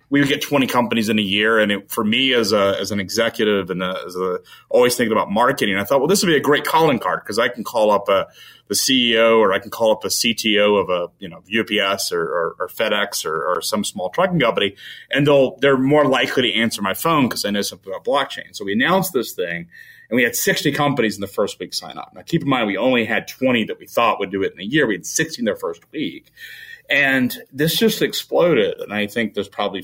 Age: 30-49